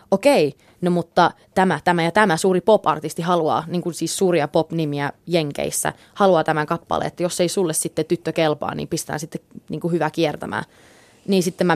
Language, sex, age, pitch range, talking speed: Finnish, female, 20-39, 155-180 Hz, 180 wpm